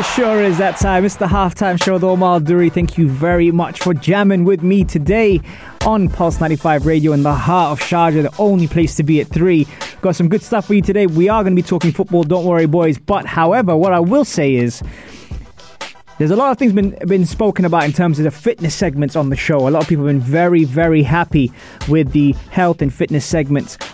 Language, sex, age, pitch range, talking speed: English, male, 20-39, 150-190 Hz, 230 wpm